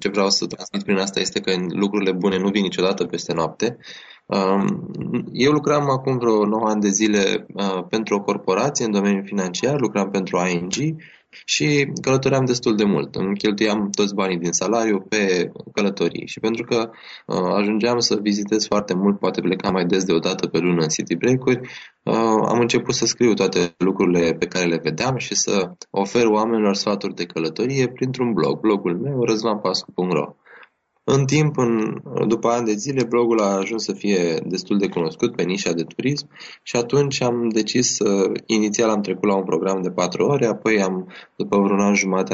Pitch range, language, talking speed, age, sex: 95-115 Hz, Romanian, 180 wpm, 20-39, male